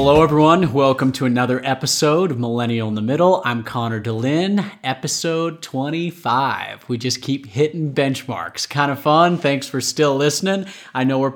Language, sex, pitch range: English, male, 125-160 Hz